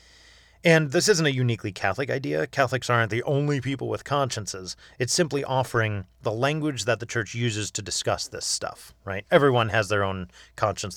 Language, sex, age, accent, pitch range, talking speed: English, male, 30-49, American, 105-155 Hz, 180 wpm